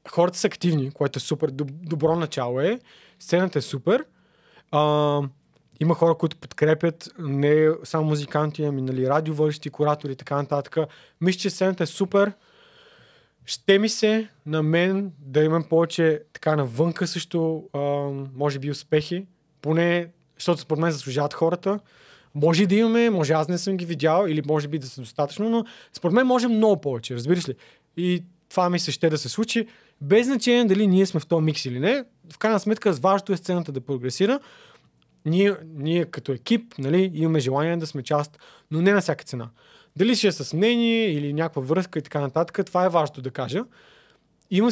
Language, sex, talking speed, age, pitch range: Bulgarian, male, 175 wpm, 20-39, 150-190 Hz